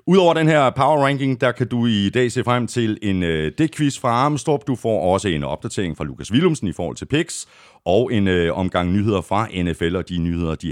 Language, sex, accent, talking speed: Danish, male, native, 230 wpm